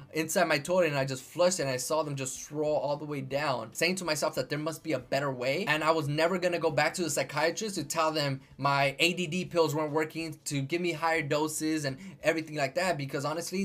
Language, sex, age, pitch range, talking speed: English, male, 20-39, 145-185 Hz, 245 wpm